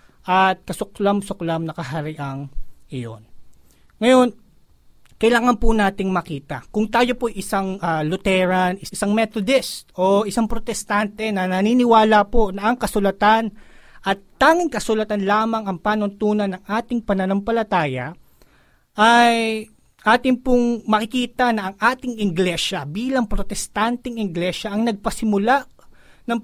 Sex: male